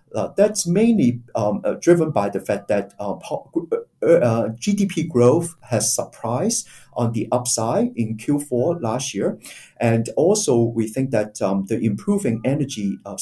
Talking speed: 150 wpm